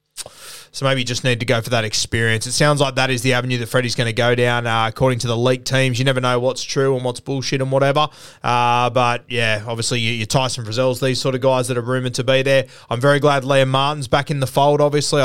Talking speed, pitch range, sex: 265 wpm, 120-145 Hz, male